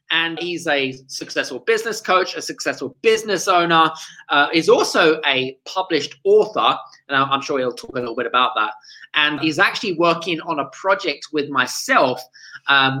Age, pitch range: 20-39, 140-225 Hz